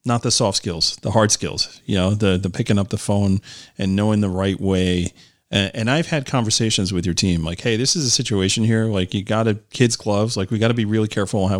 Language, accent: English, American